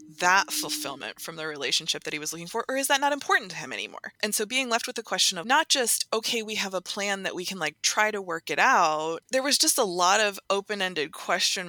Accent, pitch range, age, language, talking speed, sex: American, 160-230 Hz, 20-39, English, 255 wpm, female